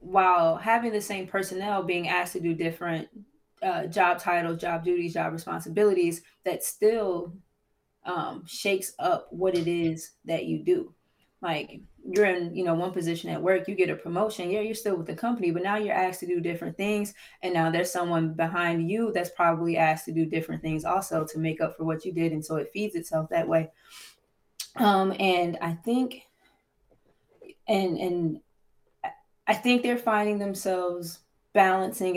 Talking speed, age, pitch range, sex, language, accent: 175 wpm, 20-39, 170-195 Hz, female, English, American